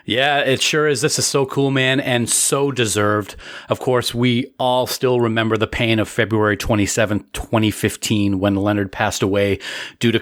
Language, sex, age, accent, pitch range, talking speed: English, male, 40-59, American, 110-135 Hz, 175 wpm